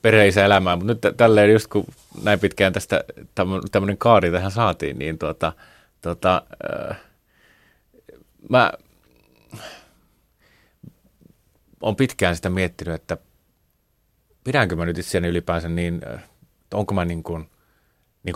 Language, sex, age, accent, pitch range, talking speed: Finnish, male, 30-49, native, 85-105 Hz, 115 wpm